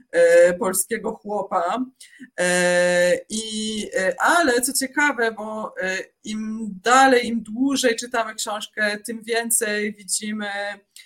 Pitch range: 185-245 Hz